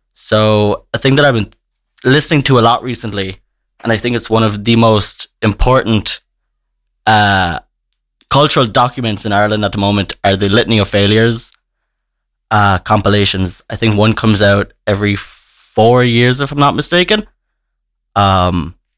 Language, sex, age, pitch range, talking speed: English, male, 20-39, 100-125 Hz, 150 wpm